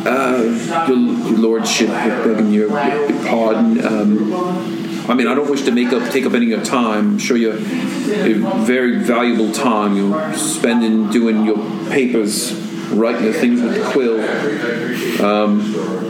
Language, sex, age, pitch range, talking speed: English, male, 40-59, 110-130 Hz, 145 wpm